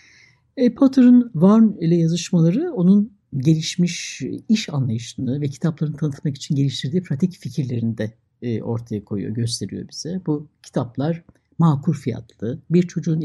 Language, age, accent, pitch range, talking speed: Turkish, 60-79, native, 130-180 Hz, 125 wpm